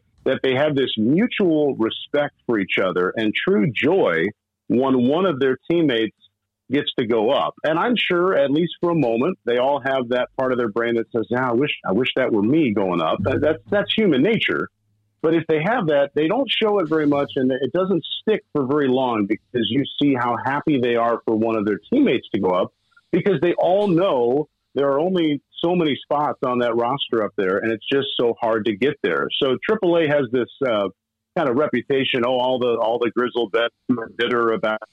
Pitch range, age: 115-155 Hz, 50-69